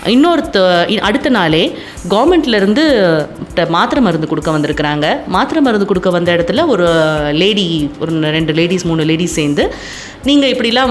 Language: Tamil